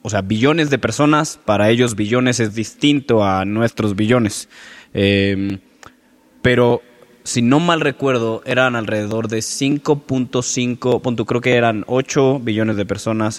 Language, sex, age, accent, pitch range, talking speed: Spanish, male, 20-39, Mexican, 105-125 Hz, 135 wpm